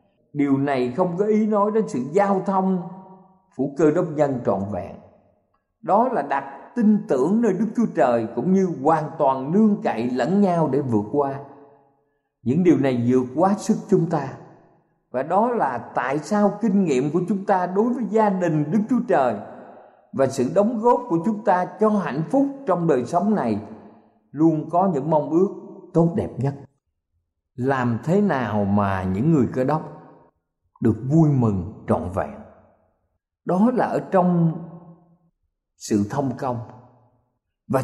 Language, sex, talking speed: Vietnamese, male, 165 wpm